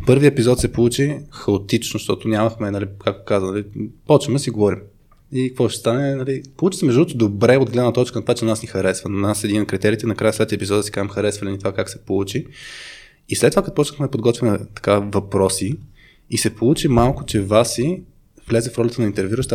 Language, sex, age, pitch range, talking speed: Bulgarian, male, 20-39, 100-125 Hz, 225 wpm